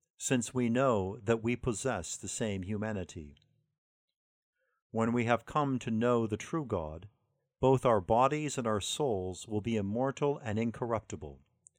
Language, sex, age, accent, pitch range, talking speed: English, male, 50-69, American, 100-130 Hz, 150 wpm